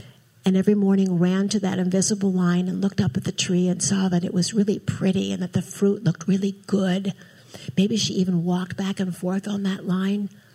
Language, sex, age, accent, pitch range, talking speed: English, female, 60-79, American, 175-200 Hz, 215 wpm